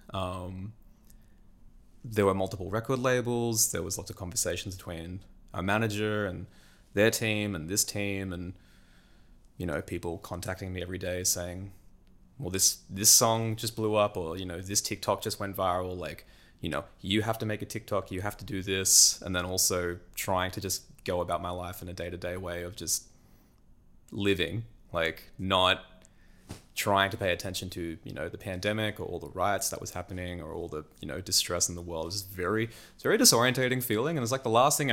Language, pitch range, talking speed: English, 90-105 Hz, 195 wpm